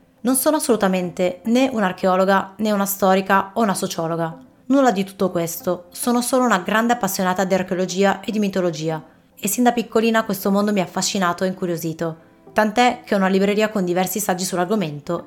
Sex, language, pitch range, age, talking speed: female, Italian, 175-215 Hz, 20-39, 175 wpm